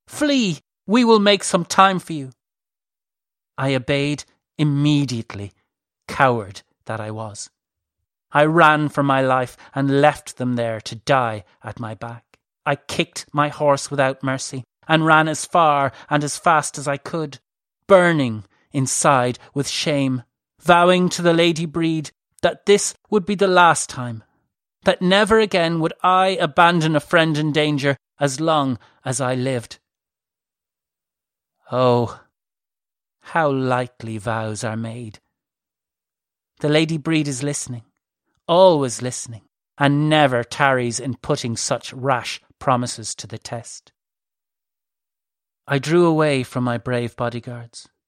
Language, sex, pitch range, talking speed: English, male, 125-160 Hz, 135 wpm